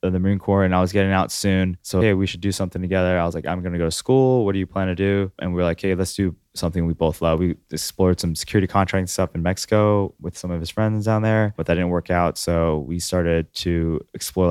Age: 20-39